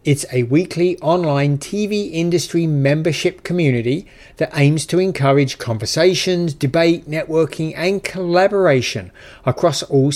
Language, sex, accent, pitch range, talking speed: English, male, British, 130-170 Hz, 110 wpm